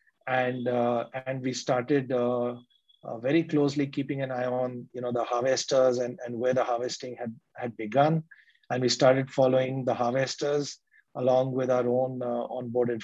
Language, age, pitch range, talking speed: English, 30-49, 120-140 Hz, 170 wpm